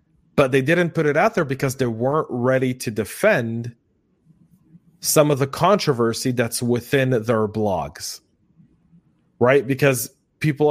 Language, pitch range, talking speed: English, 115-145 Hz, 135 wpm